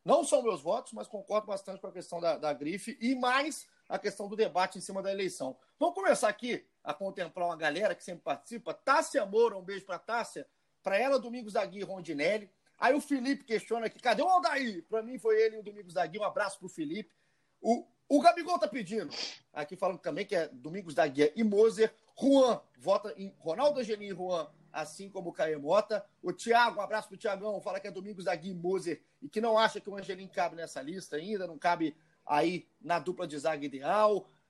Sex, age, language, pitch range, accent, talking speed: male, 40-59, Portuguese, 185-235 Hz, Brazilian, 220 wpm